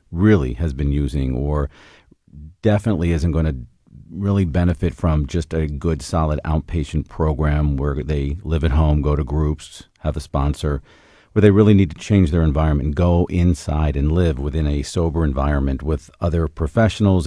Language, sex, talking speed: English, male, 165 wpm